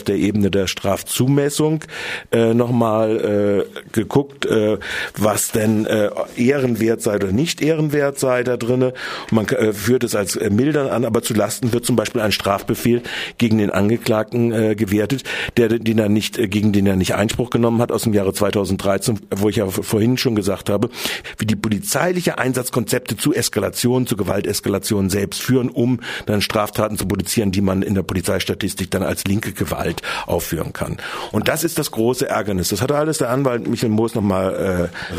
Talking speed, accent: 175 wpm, German